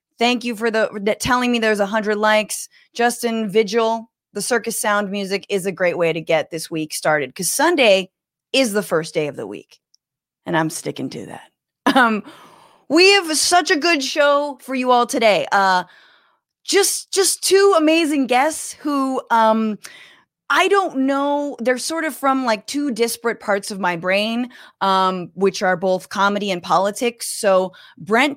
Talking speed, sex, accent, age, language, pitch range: 170 wpm, female, American, 20-39, English, 185-250 Hz